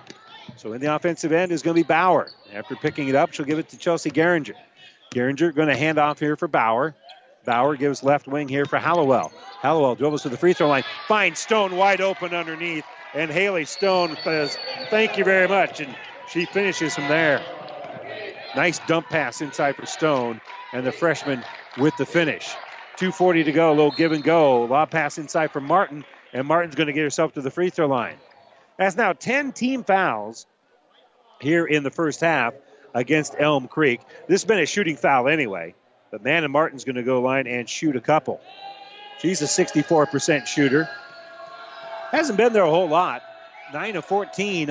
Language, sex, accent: English, male, American